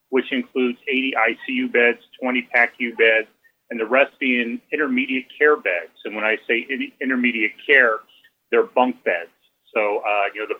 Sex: male